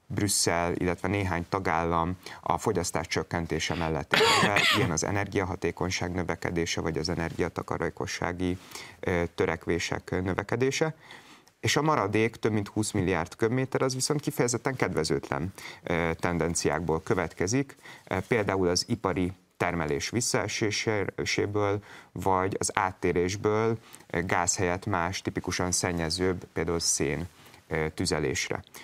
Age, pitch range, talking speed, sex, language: 30-49, 85-105 Hz, 100 wpm, male, Hungarian